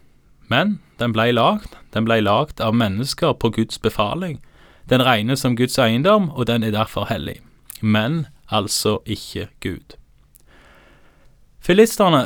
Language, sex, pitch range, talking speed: Danish, male, 120-155 Hz, 130 wpm